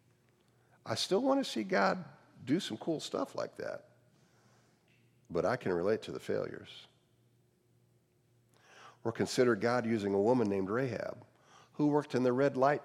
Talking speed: 155 wpm